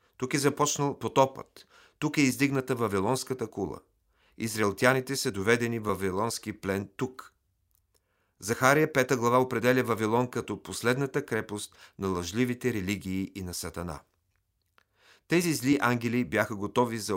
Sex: male